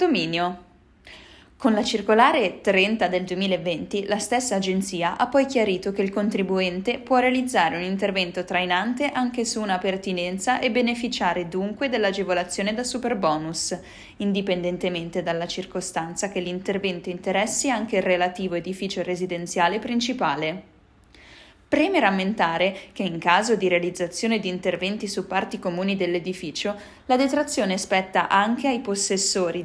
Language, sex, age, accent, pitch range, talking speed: Italian, female, 20-39, native, 180-225 Hz, 130 wpm